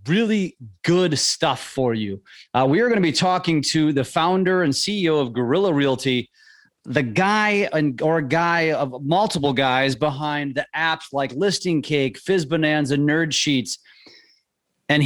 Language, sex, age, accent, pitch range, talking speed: English, male, 30-49, American, 135-175 Hz, 155 wpm